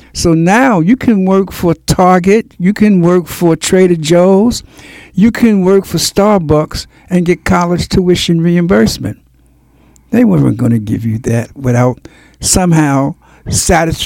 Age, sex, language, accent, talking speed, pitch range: 60-79, male, English, American, 140 wpm, 135-190 Hz